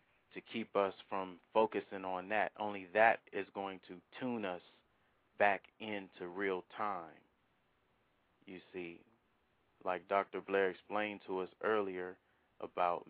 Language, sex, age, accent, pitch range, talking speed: English, male, 30-49, American, 95-105 Hz, 130 wpm